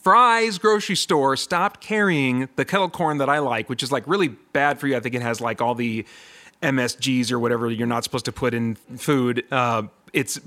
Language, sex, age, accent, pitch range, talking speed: English, male, 30-49, American, 125-180 Hz, 210 wpm